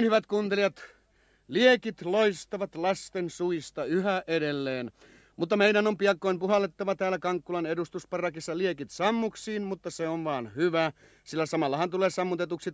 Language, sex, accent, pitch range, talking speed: Finnish, male, native, 150-190 Hz, 125 wpm